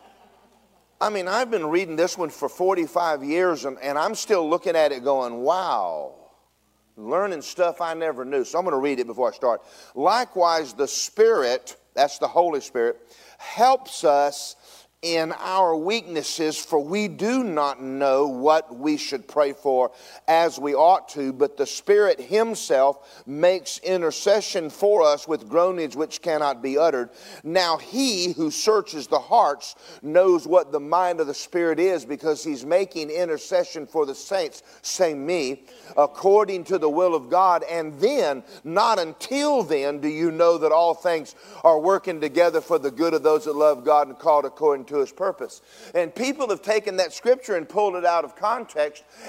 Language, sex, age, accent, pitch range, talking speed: English, male, 40-59, American, 155-215 Hz, 175 wpm